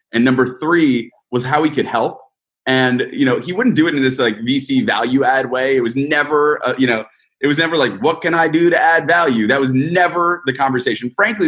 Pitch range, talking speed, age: 125-165 Hz, 230 wpm, 20-39